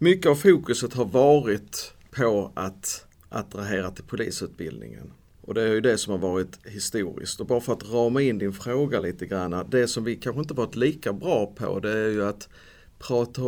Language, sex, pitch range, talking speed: Swedish, male, 100-140 Hz, 190 wpm